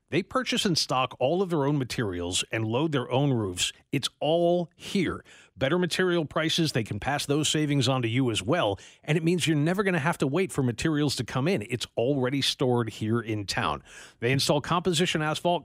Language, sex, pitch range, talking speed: English, male, 130-175 Hz, 210 wpm